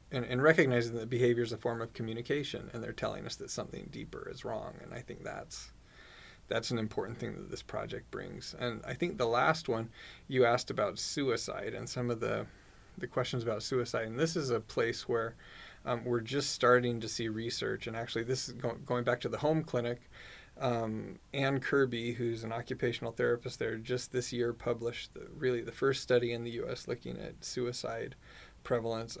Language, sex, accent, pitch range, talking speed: English, male, American, 115-125 Hz, 195 wpm